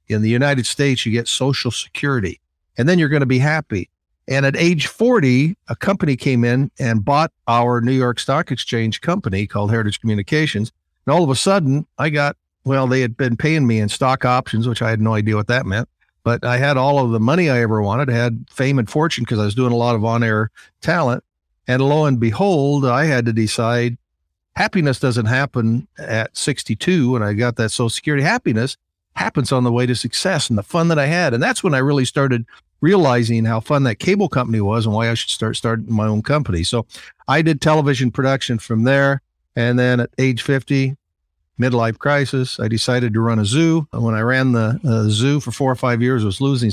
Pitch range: 115-140 Hz